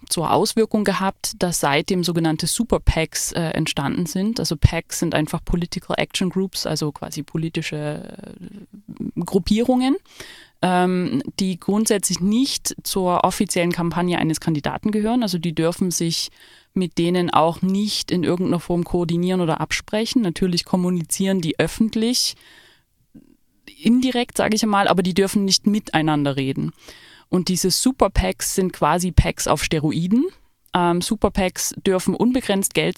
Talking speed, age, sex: 130 wpm, 20-39, female